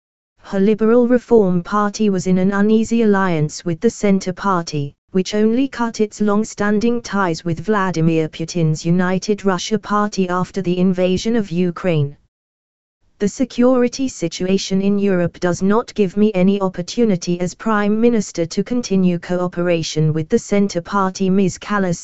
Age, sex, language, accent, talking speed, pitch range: 20-39, female, English, British, 145 wpm, 170-210 Hz